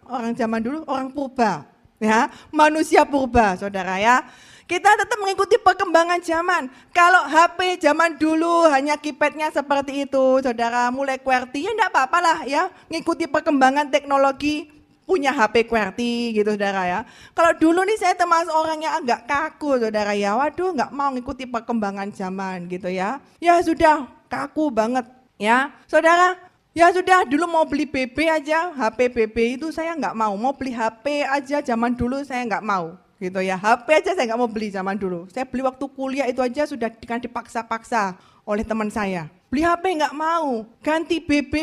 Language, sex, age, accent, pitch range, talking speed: Indonesian, female, 20-39, native, 230-330 Hz, 165 wpm